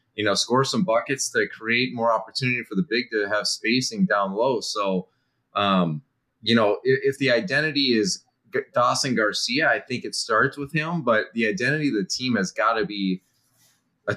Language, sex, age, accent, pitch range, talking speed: English, male, 30-49, American, 100-130 Hz, 190 wpm